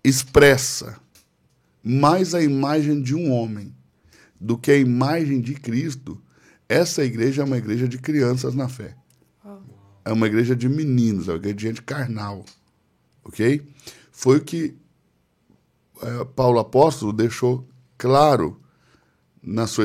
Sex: male